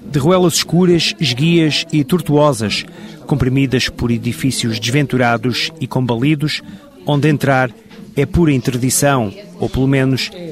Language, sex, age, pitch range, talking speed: Portuguese, male, 40-59, 125-165 Hz, 115 wpm